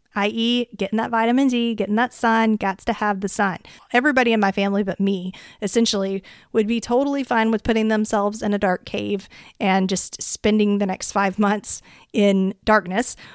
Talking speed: 180 wpm